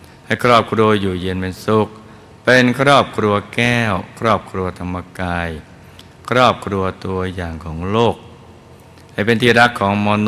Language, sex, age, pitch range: Thai, male, 60-79, 90-115 Hz